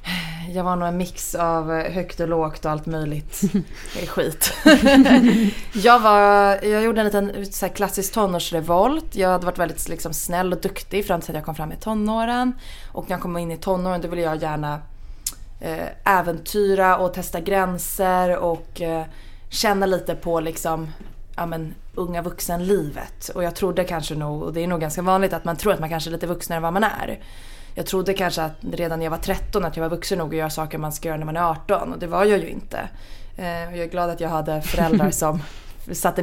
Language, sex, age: English, female, 20-39